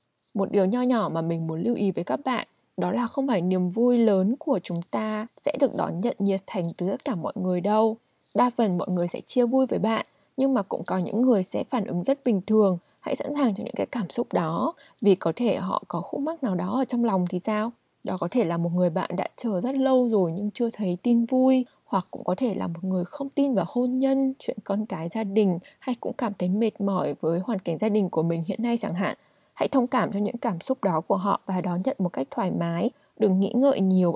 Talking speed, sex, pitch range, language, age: 265 wpm, female, 185-250 Hz, Vietnamese, 20-39